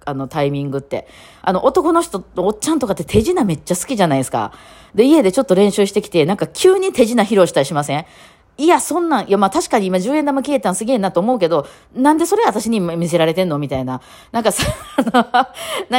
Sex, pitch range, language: female, 155-255 Hz, Japanese